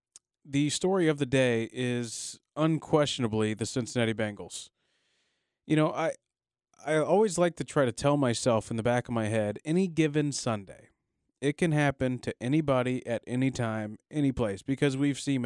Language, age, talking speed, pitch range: English, 30-49, 165 wpm, 120-150 Hz